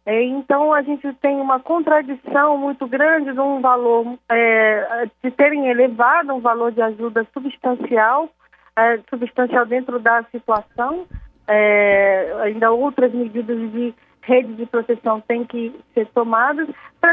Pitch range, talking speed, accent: 225-270 Hz, 135 wpm, Brazilian